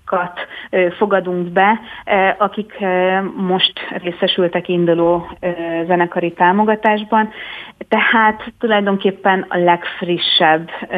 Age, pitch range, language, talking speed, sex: 30-49, 170-190 Hz, Hungarian, 65 wpm, female